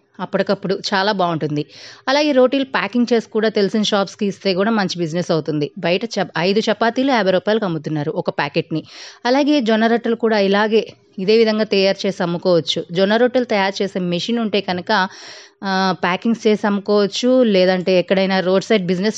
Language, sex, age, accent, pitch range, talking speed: Telugu, female, 20-39, native, 180-220 Hz, 150 wpm